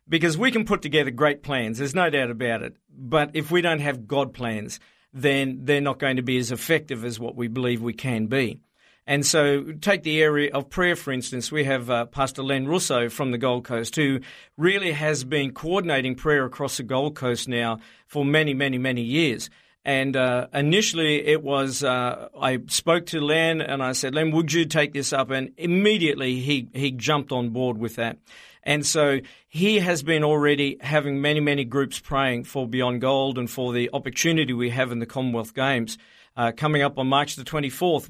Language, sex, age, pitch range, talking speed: English, male, 50-69, 125-150 Hz, 200 wpm